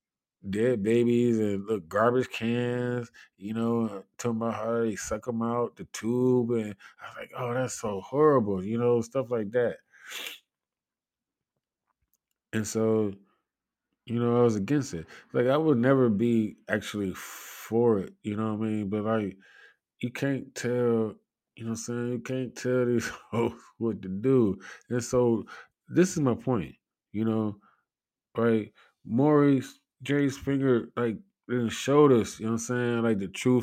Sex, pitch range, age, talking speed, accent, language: male, 110-125 Hz, 20-39, 165 wpm, American, English